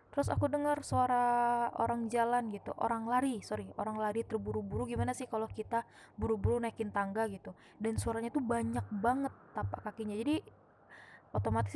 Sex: female